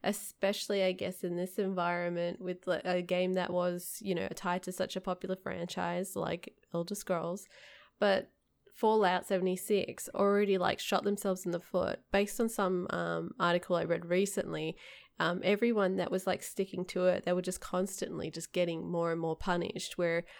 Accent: Australian